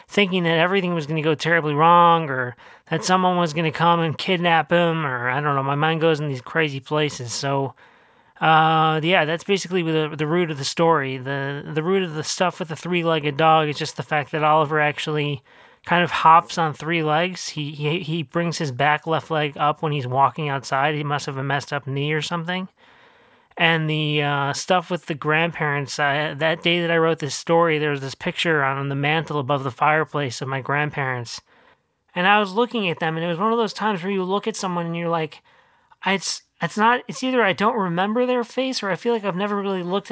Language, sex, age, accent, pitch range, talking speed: English, male, 30-49, American, 145-180 Hz, 225 wpm